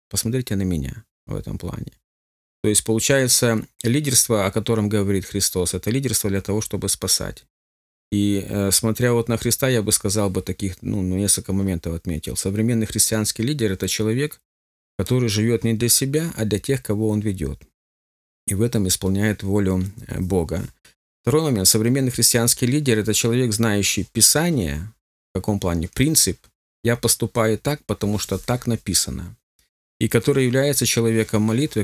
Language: Ukrainian